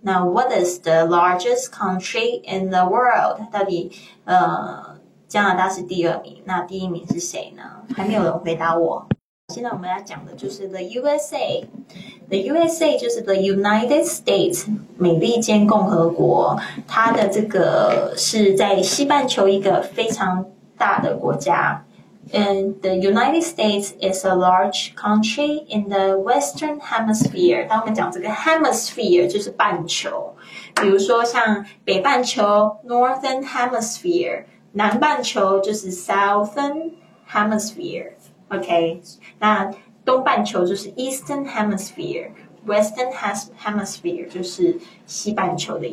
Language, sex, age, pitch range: Chinese, female, 20-39, 190-245 Hz